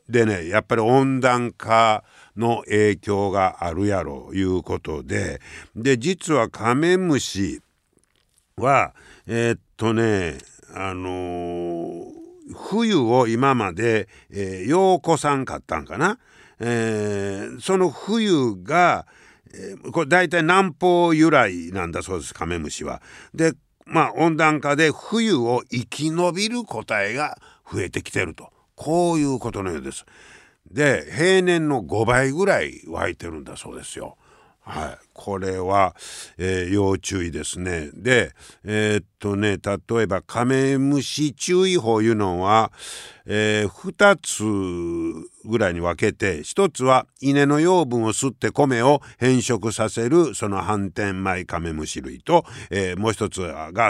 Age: 60-79